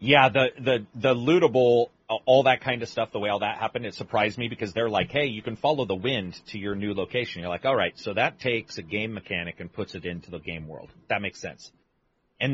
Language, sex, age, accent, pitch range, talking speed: English, male, 30-49, American, 100-140 Hz, 250 wpm